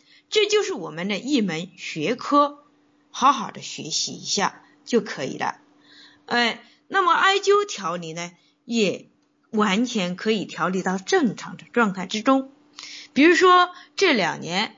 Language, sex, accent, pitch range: Chinese, female, native, 215-300 Hz